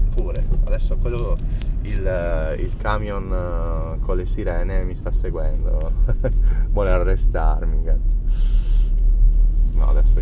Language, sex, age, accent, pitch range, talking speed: Italian, male, 30-49, native, 85-105 Hz, 95 wpm